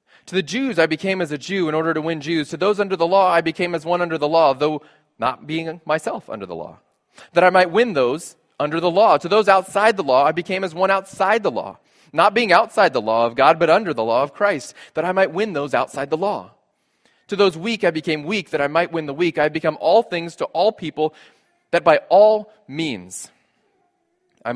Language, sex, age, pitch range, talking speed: English, male, 20-39, 130-185 Hz, 240 wpm